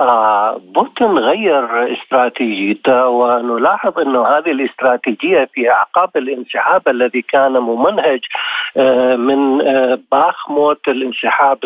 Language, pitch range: Arabic, 130-160 Hz